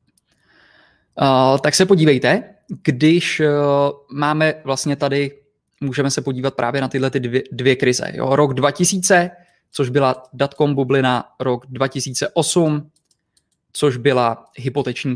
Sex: male